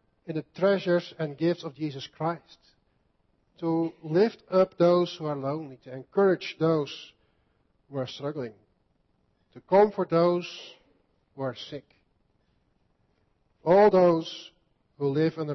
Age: 50-69